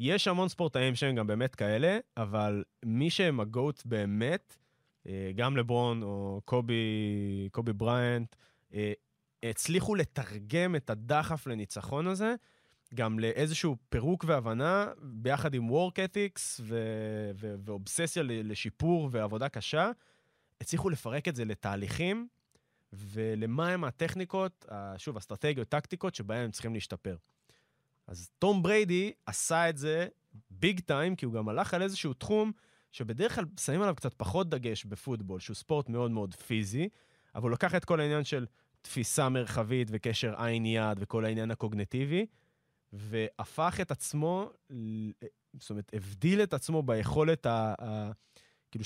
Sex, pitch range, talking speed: male, 110-165 Hz, 125 wpm